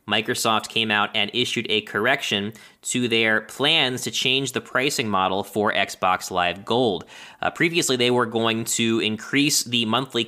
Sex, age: male, 20-39